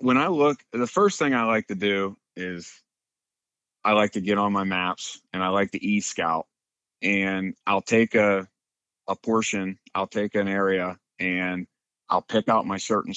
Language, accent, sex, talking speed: English, American, male, 180 wpm